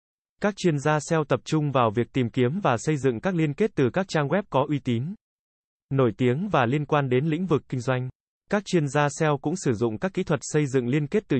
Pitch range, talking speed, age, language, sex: 125-160 Hz, 255 wpm, 20-39, Vietnamese, male